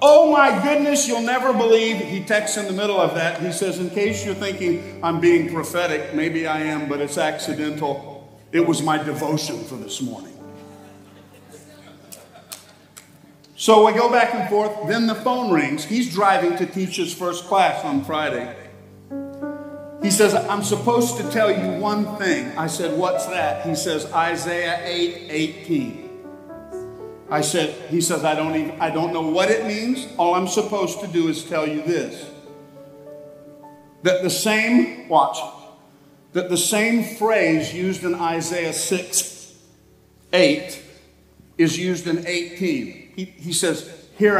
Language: English